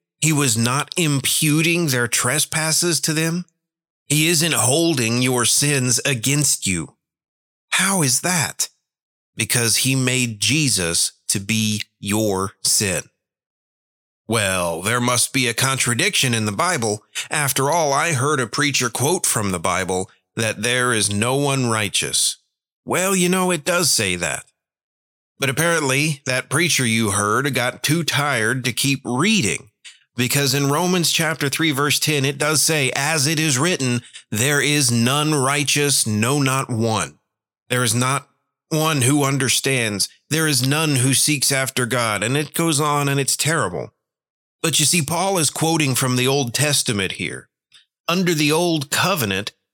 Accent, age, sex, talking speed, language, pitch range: American, 30-49, male, 150 wpm, English, 120-155 Hz